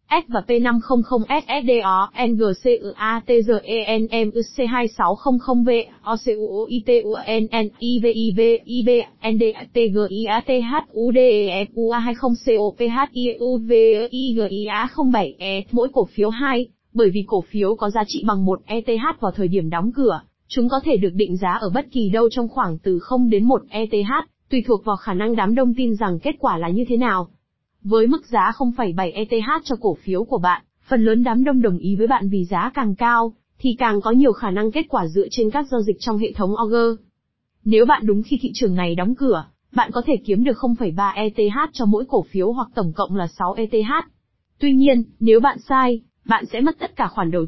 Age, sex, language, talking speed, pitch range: 20-39, female, Vietnamese, 175 wpm, 205-245 Hz